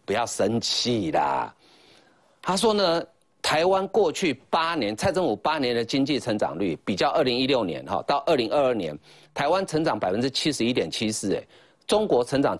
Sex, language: male, Chinese